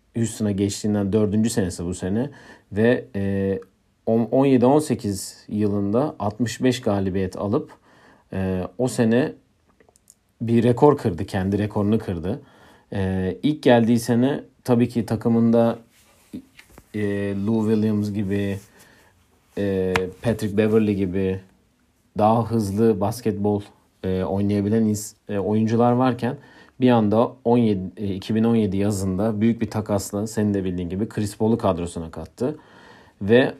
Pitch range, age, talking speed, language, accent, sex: 100-115 Hz, 40-59, 105 wpm, Turkish, native, male